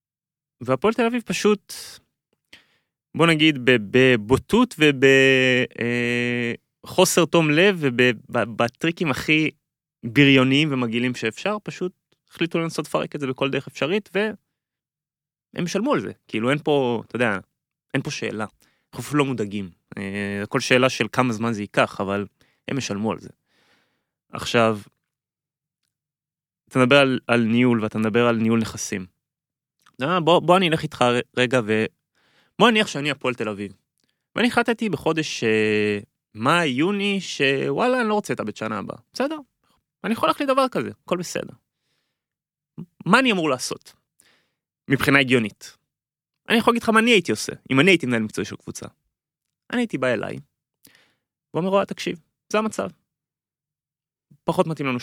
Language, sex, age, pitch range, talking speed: Hebrew, male, 20-39, 120-175 Hz, 140 wpm